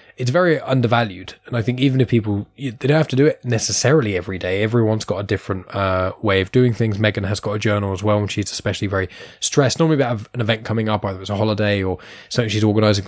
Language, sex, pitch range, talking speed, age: English, male, 100-120 Hz, 250 wpm, 10-29